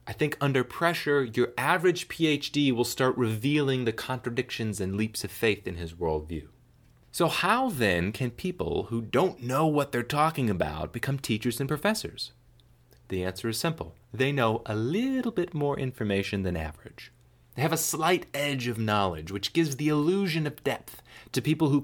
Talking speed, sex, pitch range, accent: 175 wpm, male, 105-145 Hz, American